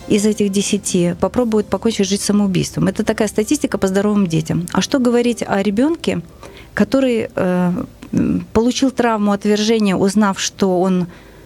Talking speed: 135 wpm